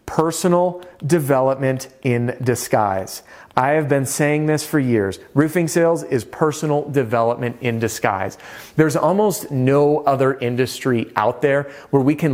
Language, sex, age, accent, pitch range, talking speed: English, male, 30-49, American, 130-155 Hz, 135 wpm